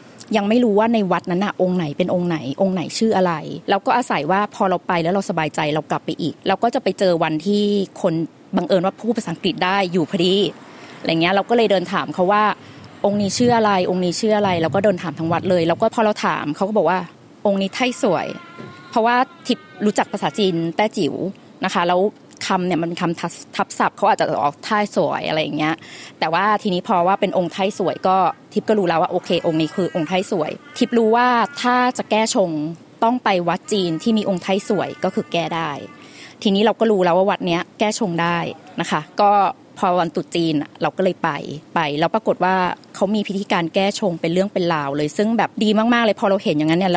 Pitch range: 170-210 Hz